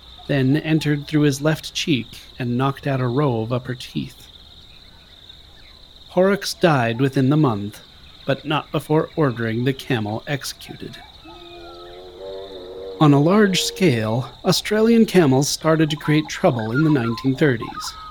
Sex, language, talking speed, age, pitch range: male, English, 130 wpm, 40-59, 115-150 Hz